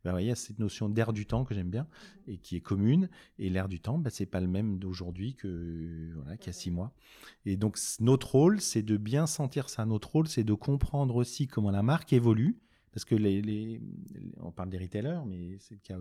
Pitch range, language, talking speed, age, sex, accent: 95-125 Hz, French, 245 wpm, 30-49, male, French